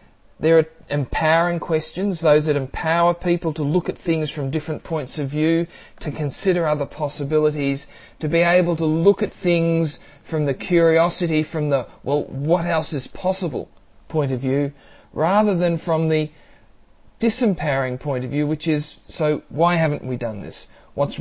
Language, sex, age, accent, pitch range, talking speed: English, male, 40-59, Australian, 135-165 Hz, 165 wpm